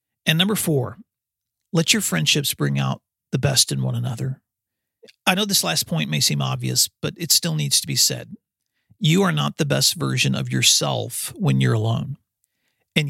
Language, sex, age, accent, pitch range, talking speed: English, male, 40-59, American, 105-155 Hz, 185 wpm